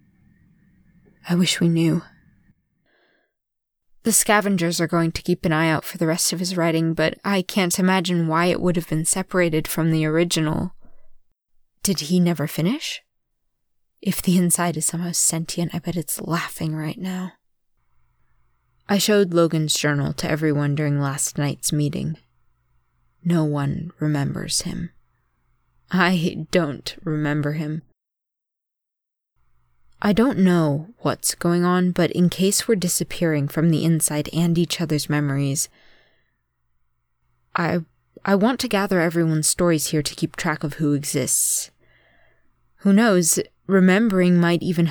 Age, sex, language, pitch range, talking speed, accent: 20-39, female, English, 155-180 Hz, 140 wpm, American